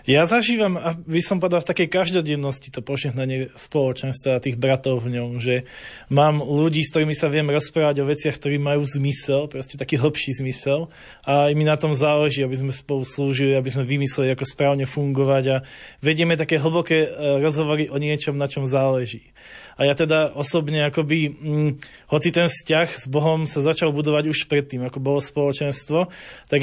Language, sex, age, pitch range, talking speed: Slovak, male, 20-39, 135-155 Hz, 175 wpm